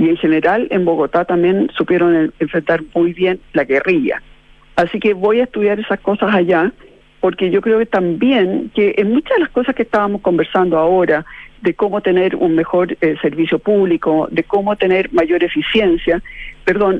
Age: 50-69